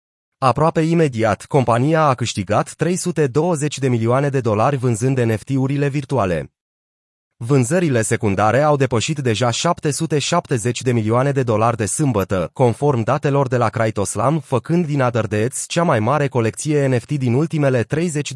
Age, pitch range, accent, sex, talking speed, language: 30-49, 120-155 Hz, native, male, 135 wpm, Romanian